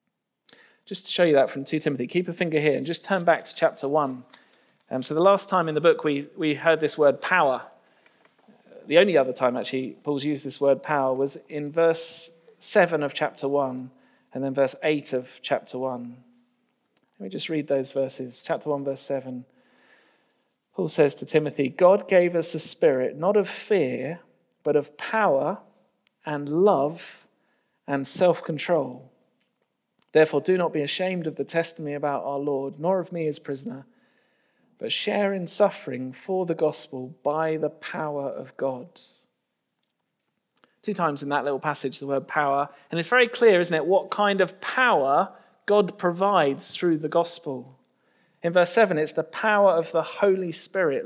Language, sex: English, male